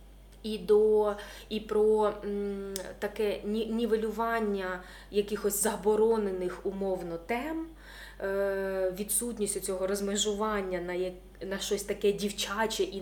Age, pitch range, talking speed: 20-39, 190-235 Hz, 90 wpm